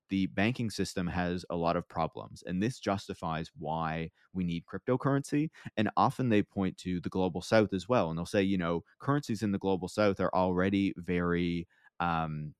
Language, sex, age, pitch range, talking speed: English, male, 30-49, 85-110 Hz, 185 wpm